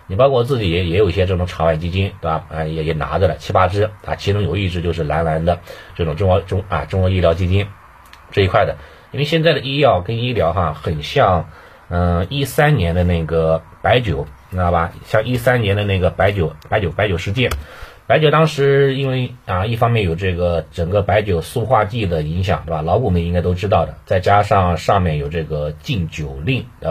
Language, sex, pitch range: Chinese, male, 80-110 Hz